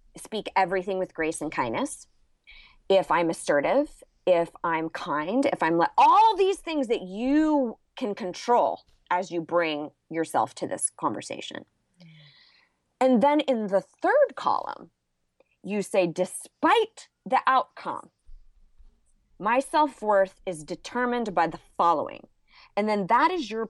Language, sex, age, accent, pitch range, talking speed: English, female, 20-39, American, 175-280 Hz, 135 wpm